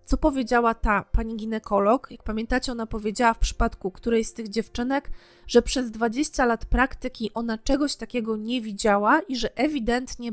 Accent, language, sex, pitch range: native, Polish, female, 220-265 Hz